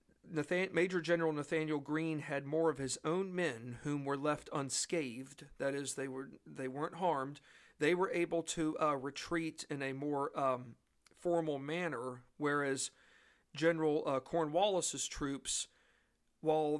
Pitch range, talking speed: 140-165 Hz, 145 wpm